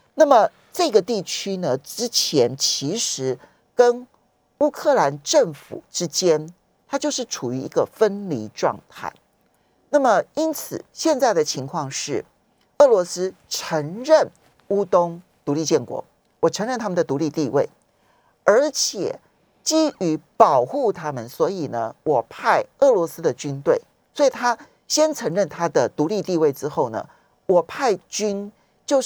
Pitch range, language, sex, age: 155-245 Hz, Chinese, male, 50-69